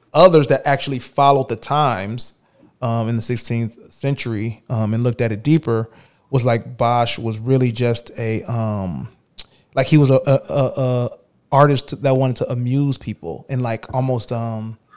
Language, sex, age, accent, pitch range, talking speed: English, male, 30-49, American, 115-135 Hz, 165 wpm